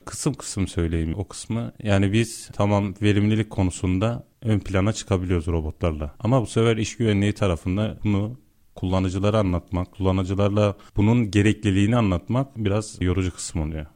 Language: Turkish